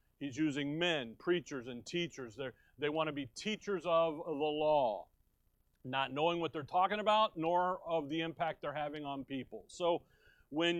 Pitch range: 140-175 Hz